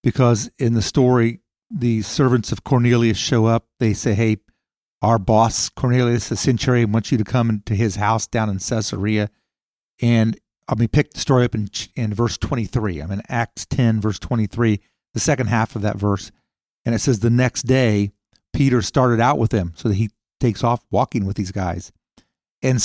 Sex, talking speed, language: male, 195 wpm, English